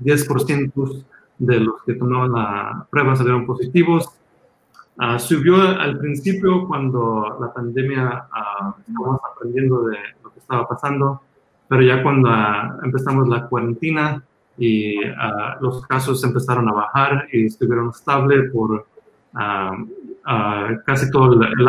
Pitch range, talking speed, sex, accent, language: 115-135 Hz, 130 wpm, male, Mexican, English